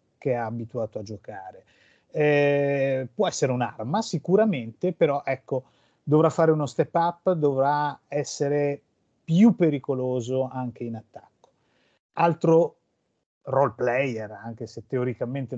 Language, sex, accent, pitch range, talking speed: Italian, male, native, 120-155 Hz, 110 wpm